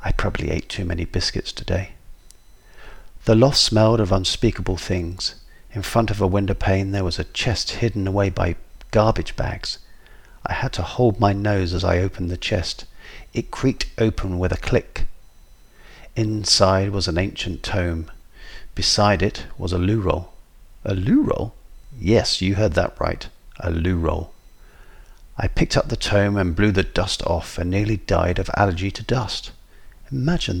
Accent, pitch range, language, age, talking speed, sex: British, 90-110 Hz, English, 50-69, 160 wpm, male